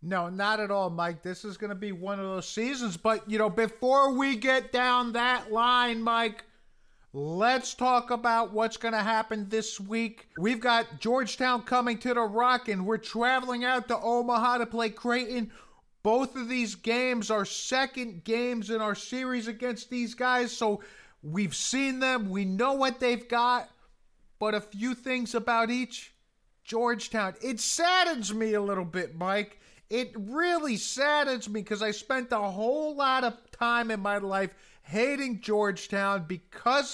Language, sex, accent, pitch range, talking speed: English, male, American, 205-250 Hz, 165 wpm